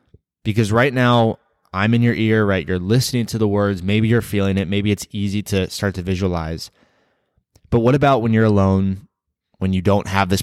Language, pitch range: English, 90-105 Hz